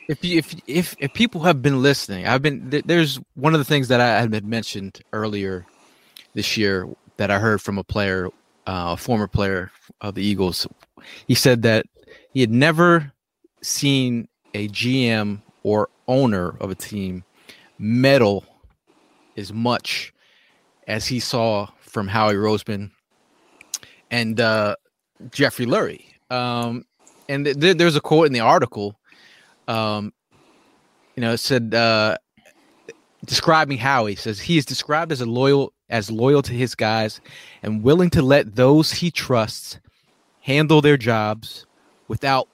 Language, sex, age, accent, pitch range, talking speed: English, male, 30-49, American, 110-145 Hz, 150 wpm